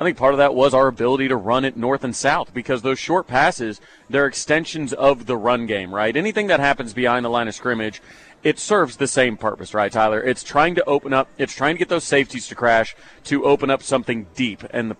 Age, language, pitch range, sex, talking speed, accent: 30-49, English, 120-145 Hz, male, 240 wpm, American